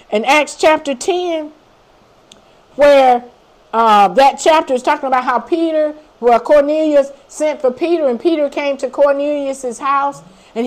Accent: American